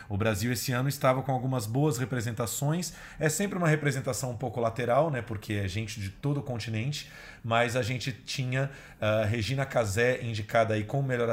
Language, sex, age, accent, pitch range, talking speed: Portuguese, male, 40-59, Brazilian, 110-135 Hz, 185 wpm